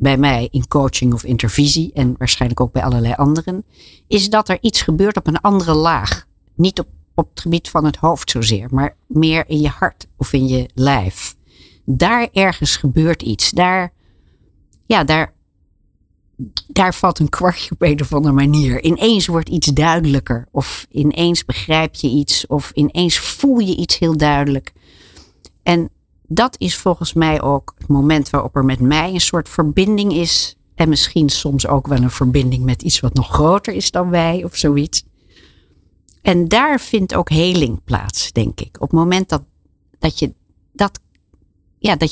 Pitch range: 125-170 Hz